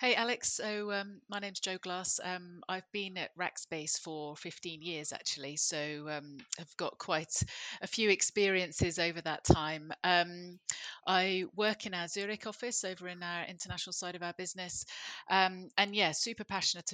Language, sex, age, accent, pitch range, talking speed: English, female, 30-49, British, 155-185 Hz, 175 wpm